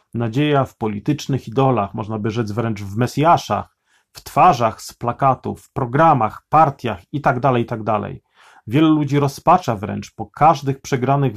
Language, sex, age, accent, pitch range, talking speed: Polish, male, 40-59, native, 110-140 Hz, 135 wpm